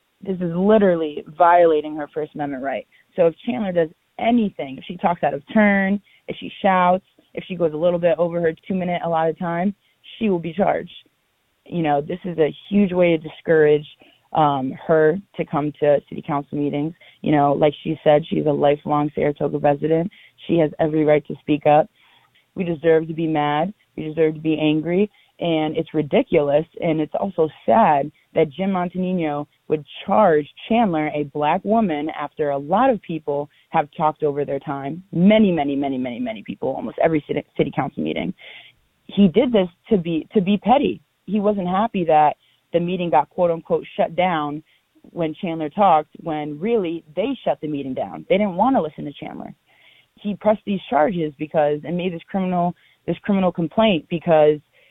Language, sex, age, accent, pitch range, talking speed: English, female, 20-39, American, 150-190 Hz, 185 wpm